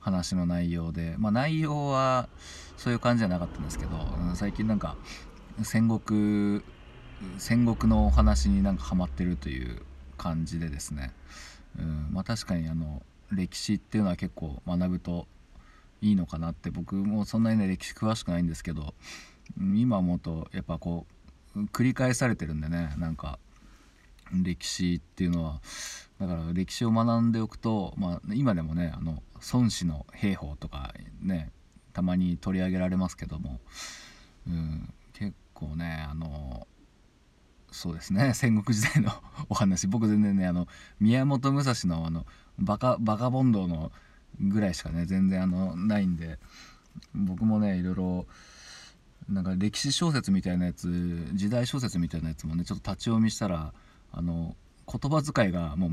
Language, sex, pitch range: Japanese, male, 80-105 Hz